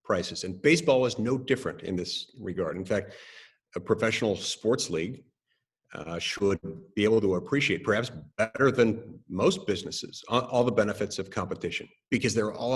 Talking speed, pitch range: 160 wpm, 95-130 Hz